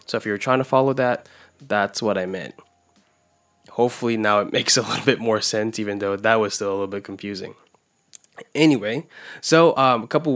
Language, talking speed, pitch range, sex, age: English, 195 wpm, 110-130 Hz, male, 10-29